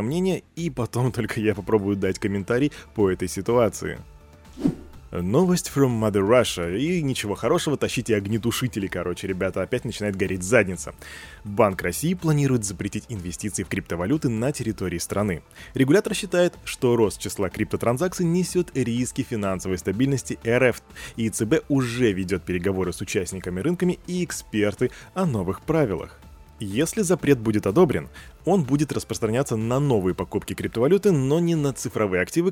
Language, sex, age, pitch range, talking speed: Russian, male, 20-39, 100-140 Hz, 140 wpm